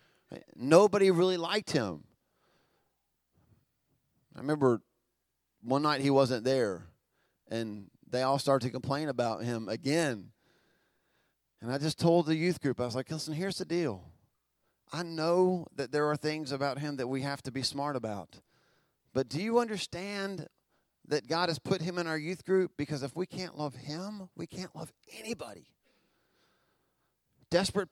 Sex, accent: male, American